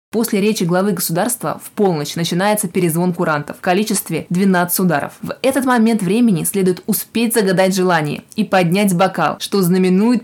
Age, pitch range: 20-39, 175-195 Hz